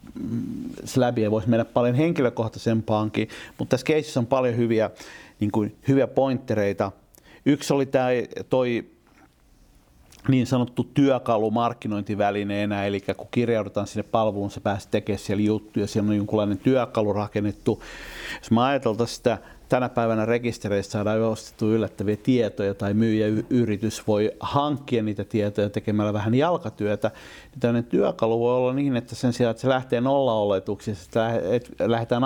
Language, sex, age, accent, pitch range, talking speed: Finnish, male, 50-69, native, 105-125 Hz, 135 wpm